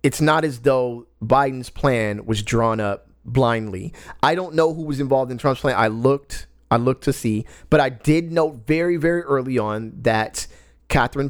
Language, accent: English, American